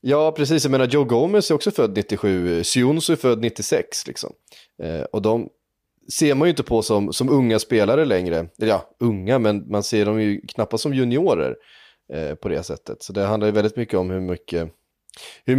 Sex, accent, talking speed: male, native, 205 wpm